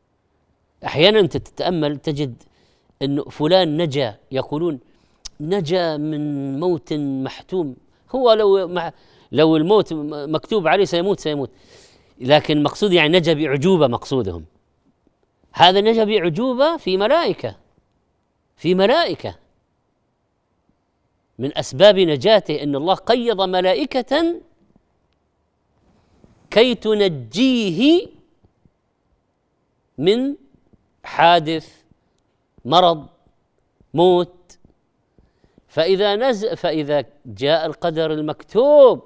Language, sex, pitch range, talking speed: Arabic, female, 145-200 Hz, 80 wpm